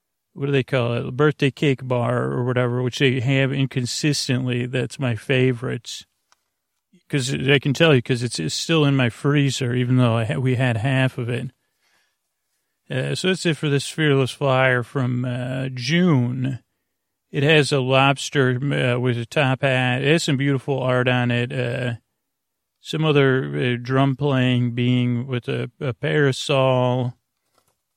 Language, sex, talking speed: English, male, 160 wpm